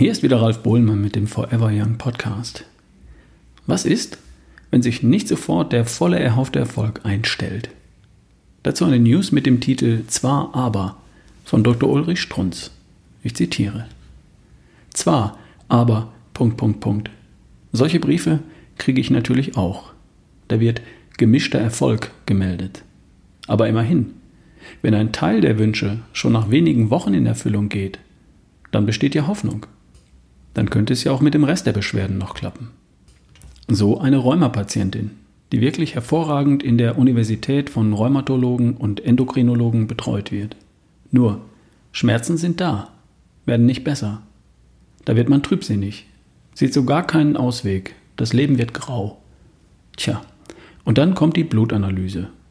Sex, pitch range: male, 100-130 Hz